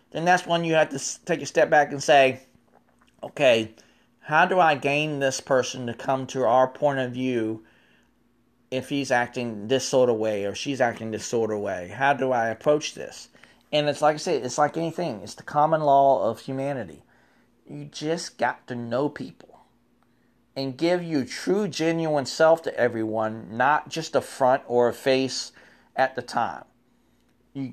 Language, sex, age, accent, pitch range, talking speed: English, male, 40-59, American, 120-150 Hz, 180 wpm